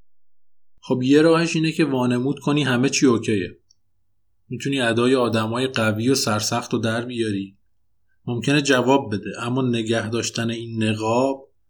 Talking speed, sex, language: 140 wpm, male, Persian